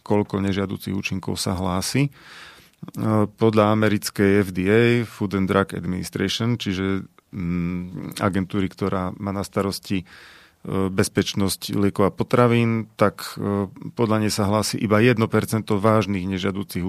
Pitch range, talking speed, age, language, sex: 100-115 Hz, 110 wpm, 40-59, Slovak, male